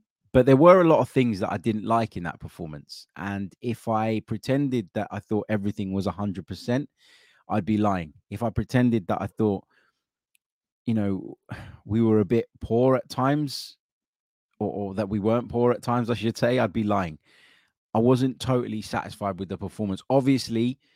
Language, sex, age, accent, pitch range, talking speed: English, male, 20-39, British, 100-115 Hz, 185 wpm